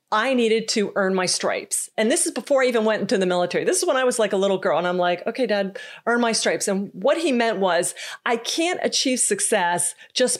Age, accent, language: 40-59, American, English